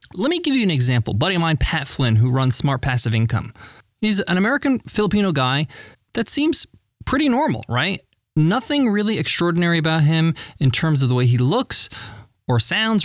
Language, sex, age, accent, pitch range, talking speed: English, male, 20-39, American, 130-200 Hz, 190 wpm